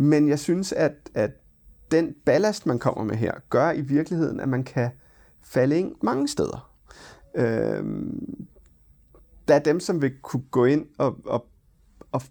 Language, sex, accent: Danish, male, native